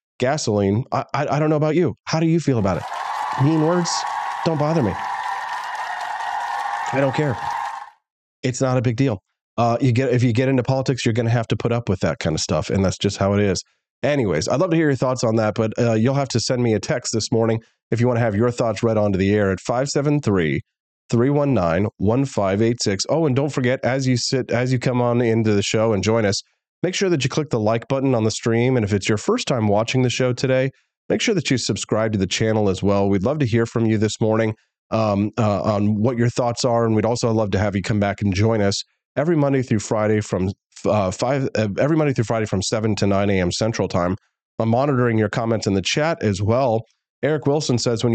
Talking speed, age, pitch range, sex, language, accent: 240 wpm, 30-49, 105-135 Hz, male, English, American